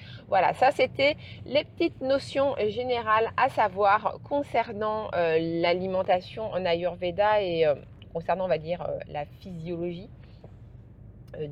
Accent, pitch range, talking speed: French, 150-230 Hz, 125 wpm